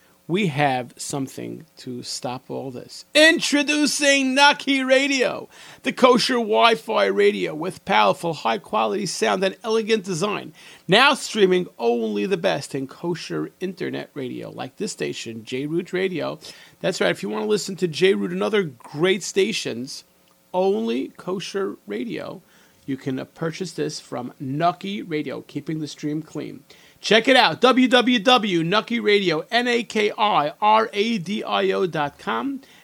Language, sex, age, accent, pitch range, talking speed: English, male, 40-59, American, 145-220 Hz, 125 wpm